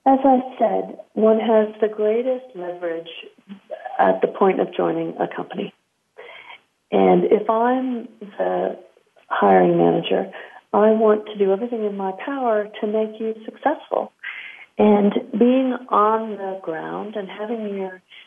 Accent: American